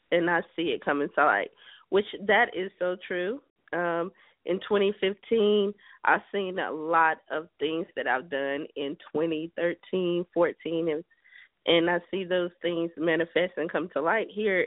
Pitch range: 175-195 Hz